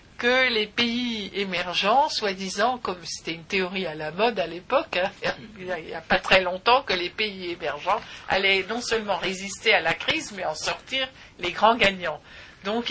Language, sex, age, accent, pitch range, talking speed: French, female, 50-69, French, 175-210 Hz, 180 wpm